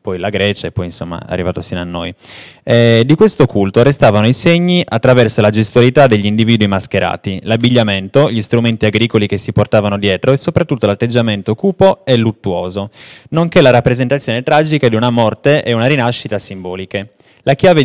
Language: Italian